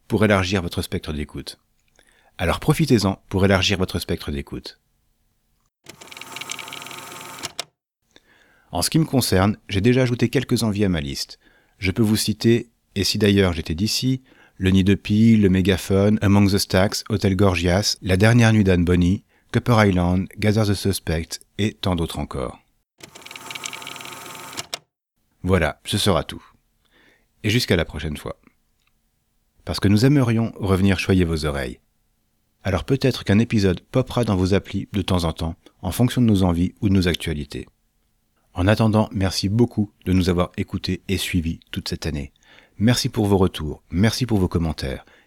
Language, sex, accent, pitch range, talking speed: French, male, French, 90-110 Hz, 155 wpm